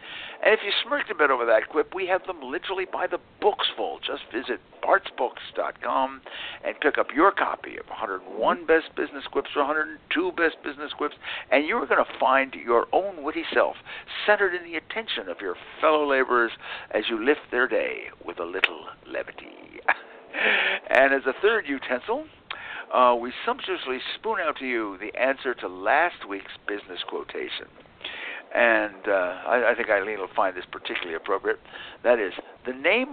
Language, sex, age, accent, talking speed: English, male, 60-79, American, 170 wpm